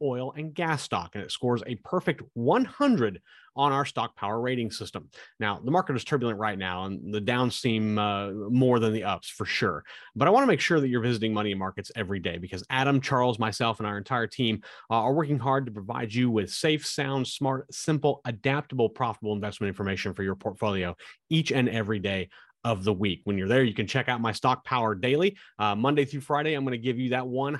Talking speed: 225 wpm